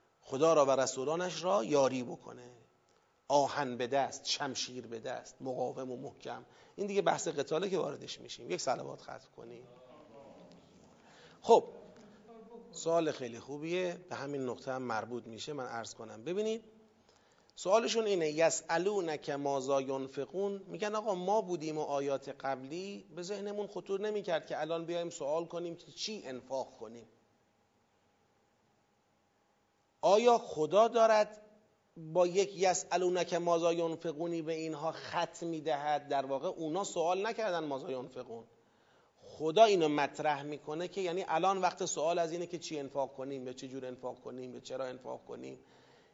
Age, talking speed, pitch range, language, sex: 40-59, 140 wpm, 140-215 Hz, Persian, male